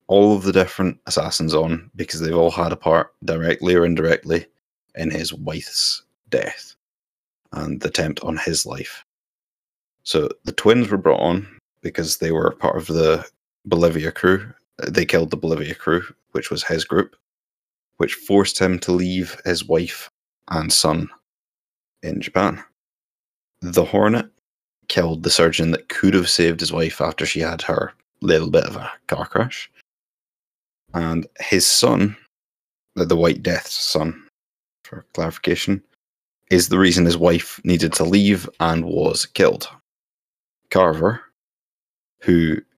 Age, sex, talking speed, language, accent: 20-39, male, 145 wpm, English, British